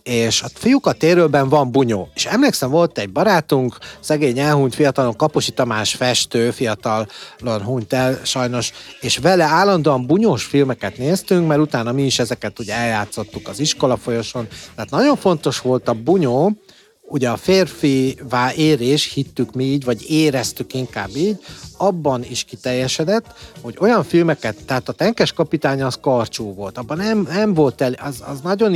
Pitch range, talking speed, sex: 120-155 Hz, 160 wpm, male